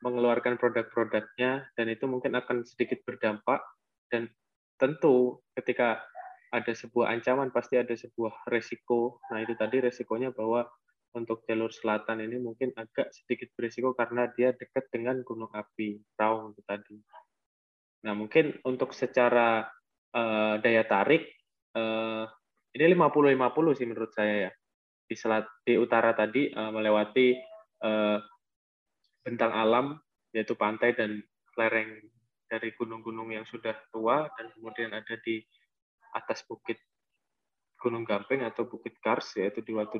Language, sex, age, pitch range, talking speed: Indonesian, male, 20-39, 110-125 Hz, 130 wpm